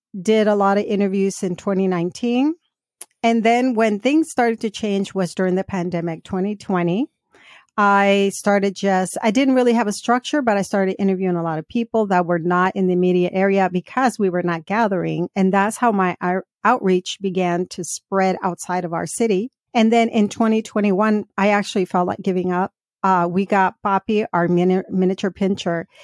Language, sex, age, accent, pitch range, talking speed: English, female, 40-59, American, 180-215 Hz, 175 wpm